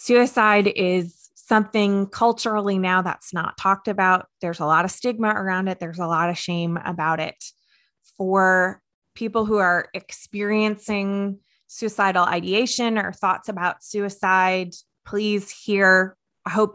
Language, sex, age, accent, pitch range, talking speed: English, female, 20-39, American, 180-205 Hz, 135 wpm